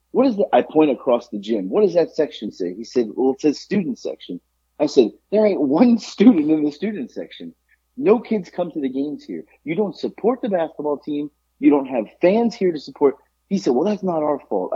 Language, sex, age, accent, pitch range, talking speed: English, male, 30-49, American, 115-190 Hz, 230 wpm